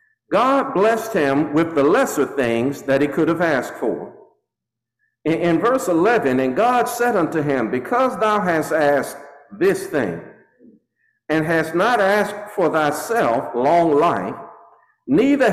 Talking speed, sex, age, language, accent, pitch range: 145 wpm, male, 60-79, English, American, 155-240 Hz